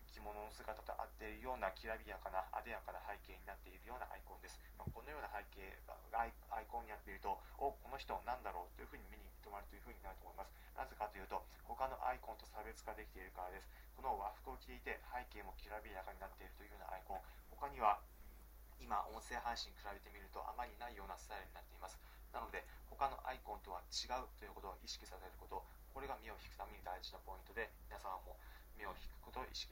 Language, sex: Japanese, male